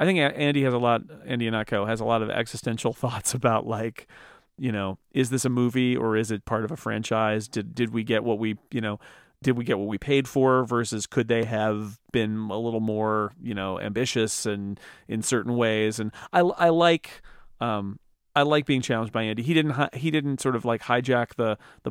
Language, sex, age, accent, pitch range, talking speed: English, male, 40-59, American, 115-155 Hz, 225 wpm